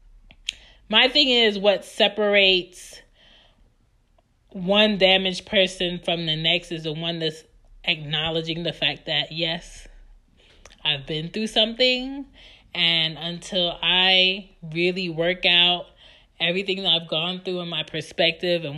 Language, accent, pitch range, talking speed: English, American, 170-200 Hz, 125 wpm